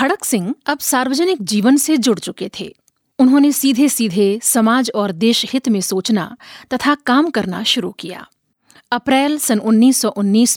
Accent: native